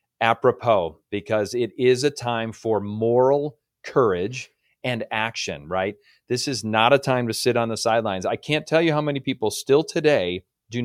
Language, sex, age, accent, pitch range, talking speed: English, male, 40-59, American, 110-140 Hz, 175 wpm